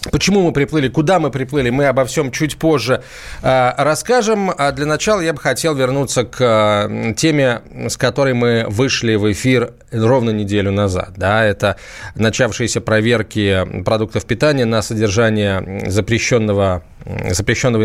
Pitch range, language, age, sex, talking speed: 110-150 Hz, Russian, 20-39, male, 140 wpm